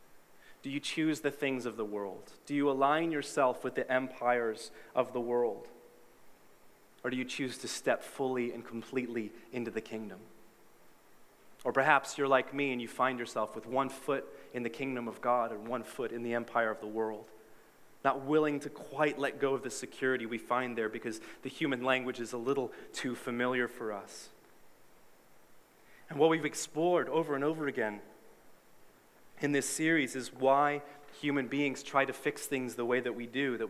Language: English